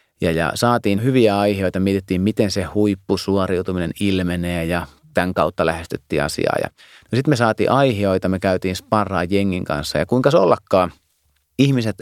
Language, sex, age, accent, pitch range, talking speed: Finnish, male, 30-49, native, 90-115 Hz, 150 wpm